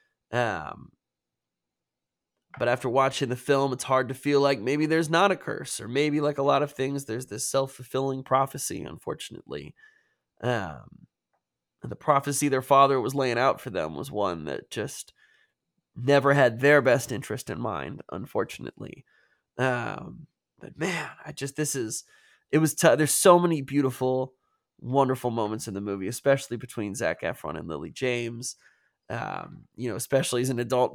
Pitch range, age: 125-145 Hz, 20-39